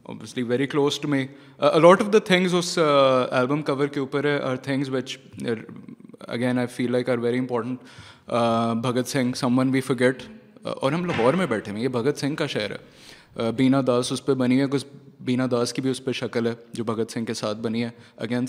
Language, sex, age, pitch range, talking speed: Urdu, male, 20-39, 120-145 Hz, 210 wpm